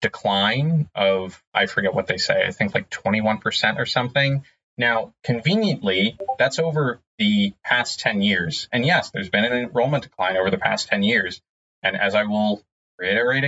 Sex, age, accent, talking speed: male, 30-49, American, 170 wpm